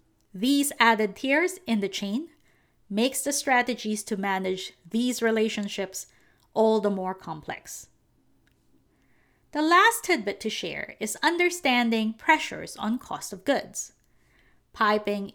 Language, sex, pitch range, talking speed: English, female, 200-275 Hz, 115 wpm